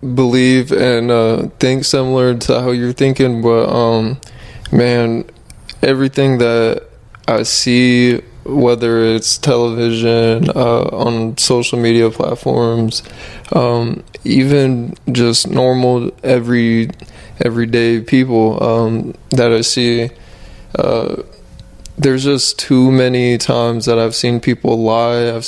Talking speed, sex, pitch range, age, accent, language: 110 wpm, male, 115-125 Hz, 20-39, American, English